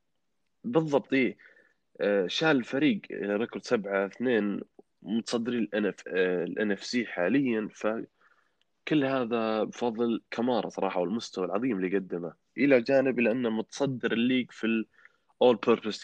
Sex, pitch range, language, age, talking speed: male, 95-120 Hz, Arabic, 20-39, 110 wpm